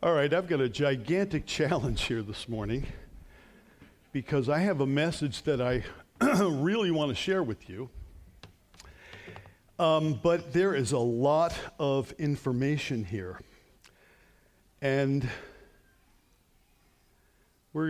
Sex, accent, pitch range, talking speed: male, American, 130-170 Hz, 105 wpm